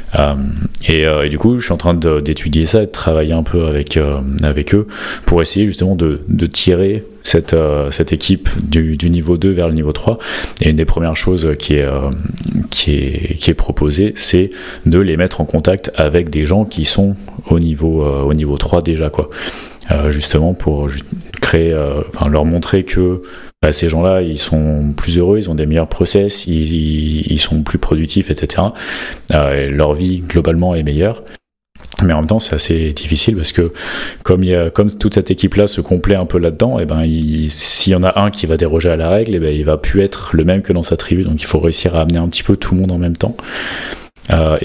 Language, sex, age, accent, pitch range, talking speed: French, male, 30-49, French, 75-95 Hz, 225 wpm